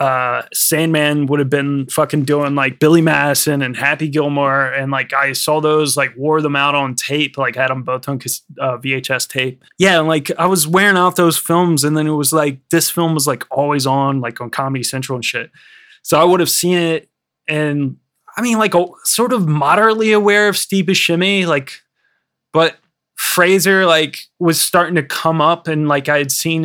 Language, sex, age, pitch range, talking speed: English, male, 20-39, 140-170 Hz, 200 wpm